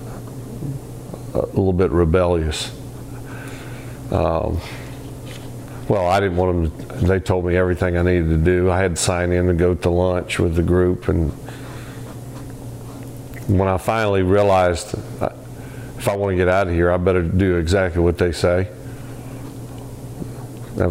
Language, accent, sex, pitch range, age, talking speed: English, American, male, 90-125 Hz, 50-69, 145 wpm